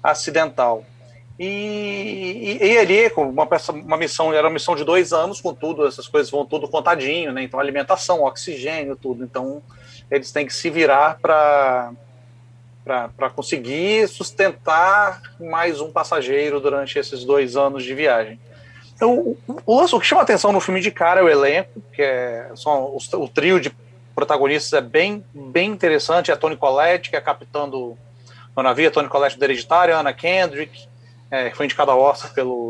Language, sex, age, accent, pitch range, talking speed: Portuguese, male, 40-59, Brazilian, 125-180 Hz, 175 wpm